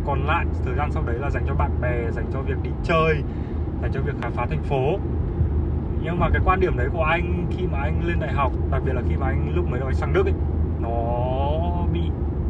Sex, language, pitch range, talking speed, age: male, Vietnamese, 75-85 Hz, 245 wpm, 20-39